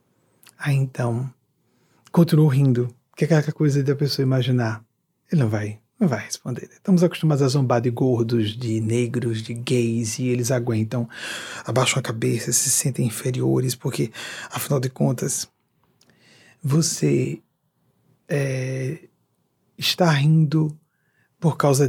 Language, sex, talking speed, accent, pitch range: Portuguese, male, 130 wpm, Brazilian, 125-175 Hz